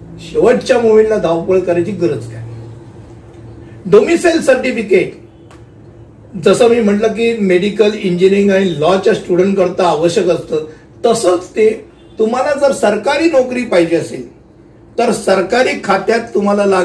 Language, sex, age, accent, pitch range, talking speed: Hindi, male, 60-79, native, 175-225 Hz, 65 wpm